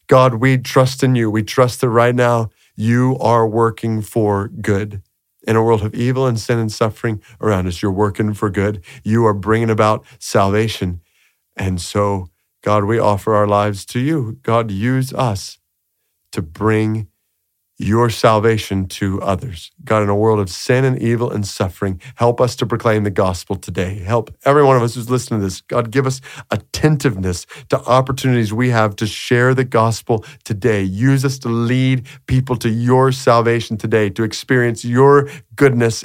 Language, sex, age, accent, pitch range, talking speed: English, male, 40-59, American, 105-135 Hz, 175 wpm